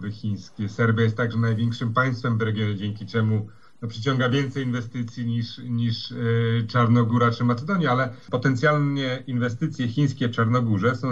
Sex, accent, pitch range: male, native, 115-135 Hz